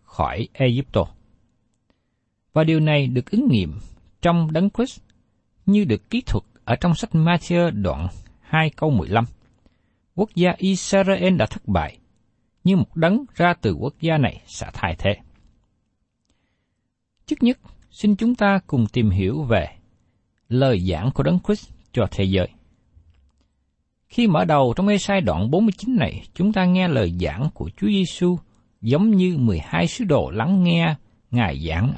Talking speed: 155 wpm